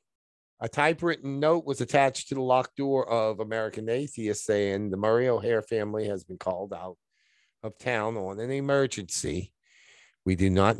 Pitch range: 95-140 Hz